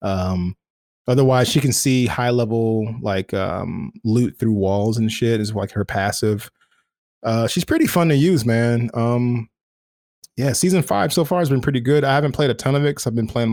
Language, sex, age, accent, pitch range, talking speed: English, male, 20-39, American, 110-140 Hz, 205 wpm